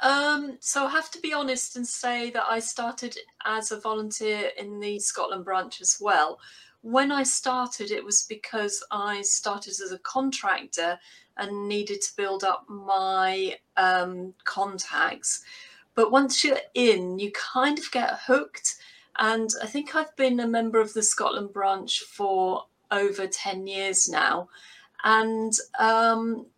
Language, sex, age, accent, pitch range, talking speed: English, female, 40-59, British, 205-255 Hz, 150 wpm